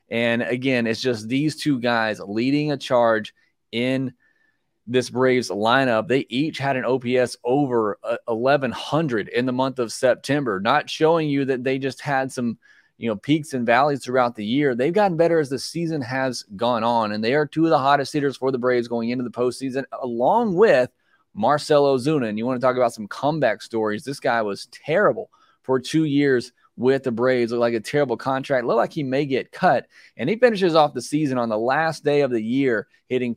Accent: American